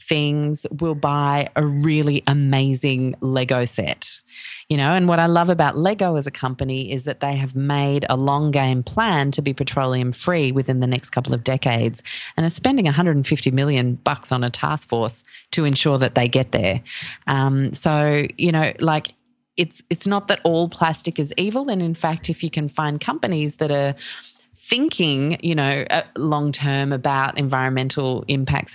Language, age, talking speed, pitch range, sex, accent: English, 30-49, 175 wpm, 130-170 Hz, female, Australian